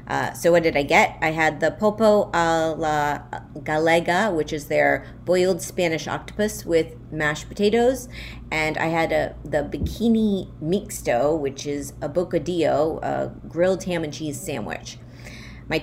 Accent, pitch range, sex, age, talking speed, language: American, 150-185 Hz, female, 30-49, 150 wpm, English